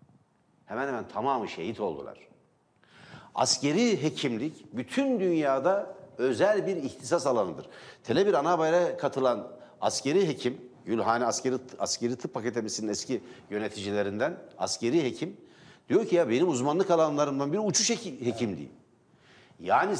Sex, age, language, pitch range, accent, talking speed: male, 60-79, Turkish, 130-190 Hz, native, 110 wpm